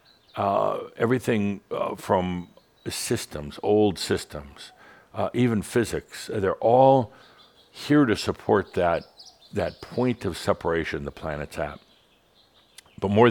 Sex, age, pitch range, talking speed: male, 60-79, 80-105 Hz, 120 wpm